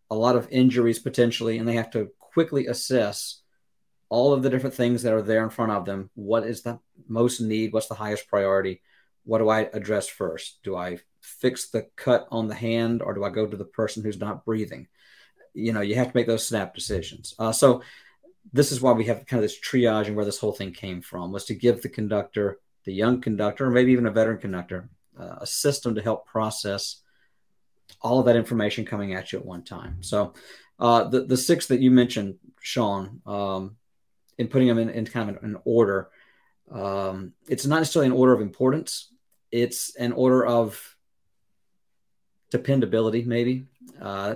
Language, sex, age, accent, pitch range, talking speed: English, male, 40-59, American, 105-125 Hz, 200 wpm